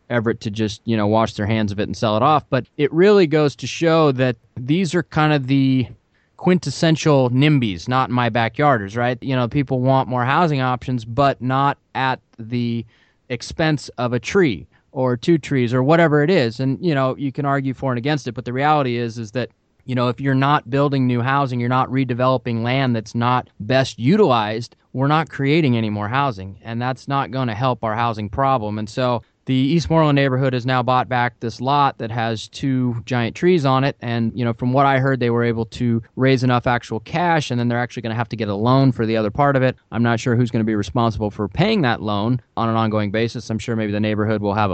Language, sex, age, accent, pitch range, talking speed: English, male, 20-39, American, 115-140 Hz, 235 wpm